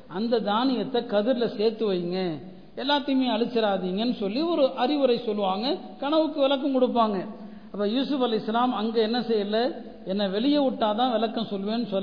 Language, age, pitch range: Tamil, 60-79, 215-260 Hz